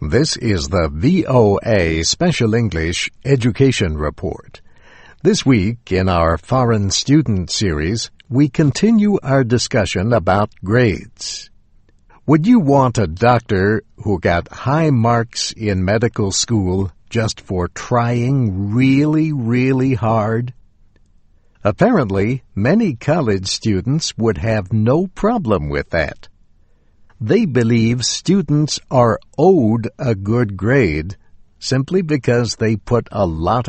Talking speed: 110 wpm